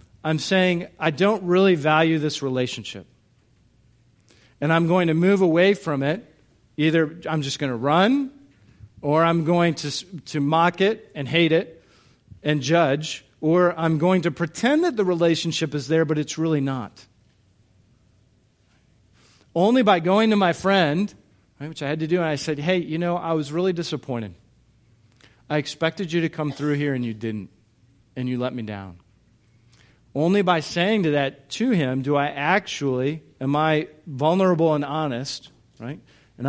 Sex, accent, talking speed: male, American, 170 wpm